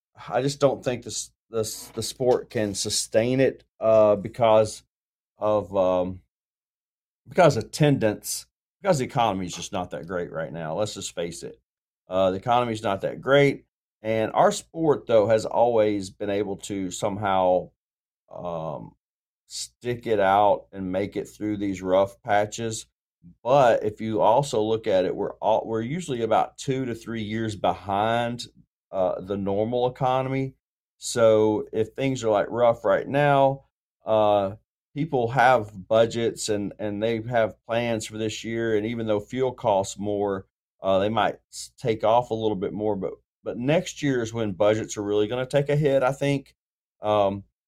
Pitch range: 105-125 Hz